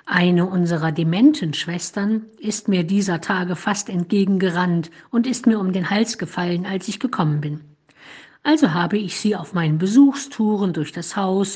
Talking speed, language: 160 wpm, German